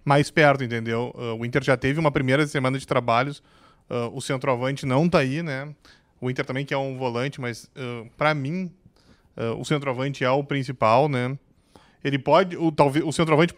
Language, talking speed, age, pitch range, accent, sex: Portuguese, 195 wpm, 20-39, 135-170 Hz, Brazilian, male